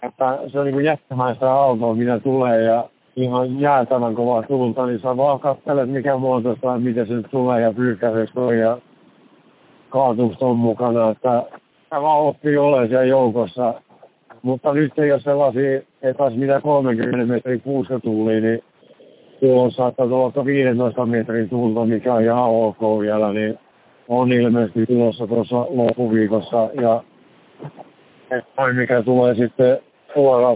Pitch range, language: 110-125 Hz, Finnish